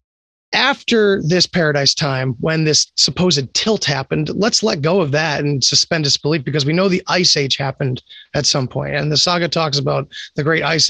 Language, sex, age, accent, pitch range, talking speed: English, male, 30-49, American, 145-185 Hz, 195 wpm